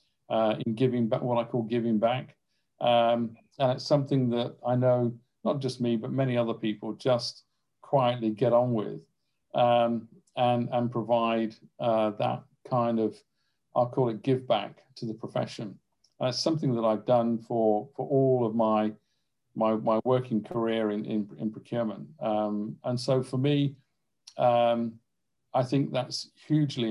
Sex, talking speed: male, 165 wpm